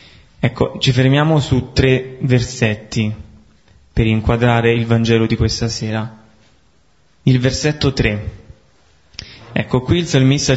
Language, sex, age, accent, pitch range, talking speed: Italian, male, 20-39, native, 110-130 Hz, 115 wpm